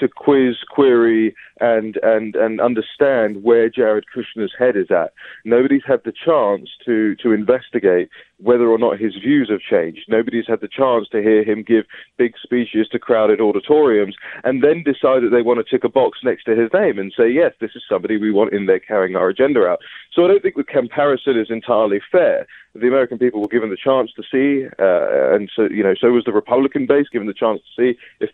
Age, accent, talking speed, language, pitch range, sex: 20-39, British, 215 wpm, English, 110-140 Hz, male